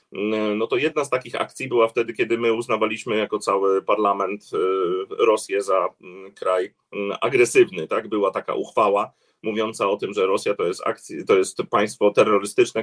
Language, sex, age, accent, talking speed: Polish, male, 30-49, native, 160 wpm